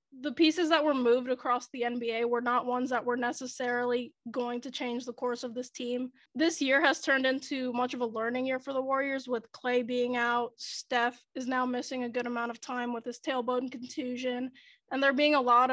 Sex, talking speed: female, 220 wpm